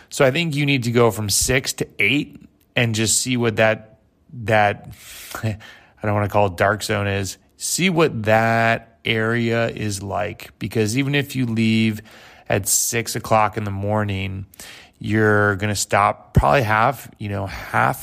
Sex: male